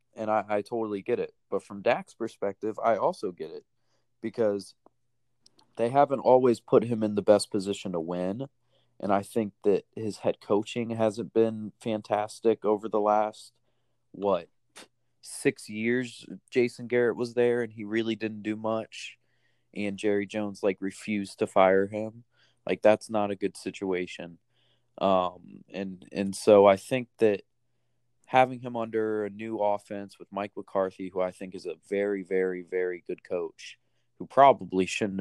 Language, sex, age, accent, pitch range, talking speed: English, male, 20-39, American, 100-120 Hz, 160 wpm